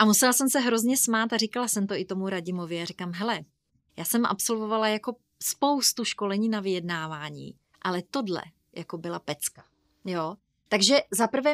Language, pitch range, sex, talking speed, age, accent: Czech, 190-240 Hz, female, 170 wpm, 30-49, native